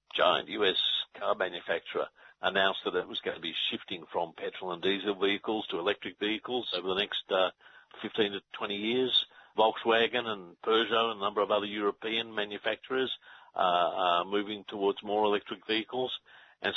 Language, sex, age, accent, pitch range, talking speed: English, male, 50-69, Australian, 105-140 Hz, 165 wpm